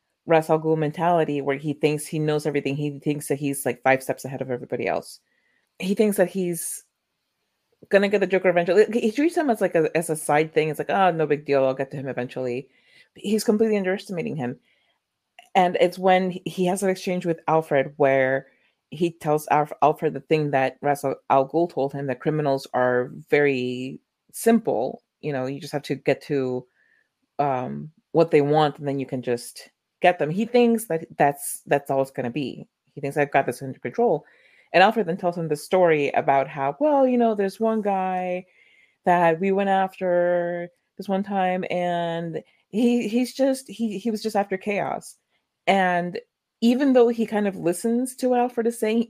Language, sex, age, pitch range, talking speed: English, female, 30-49, 145-200 Hz, 195 wpm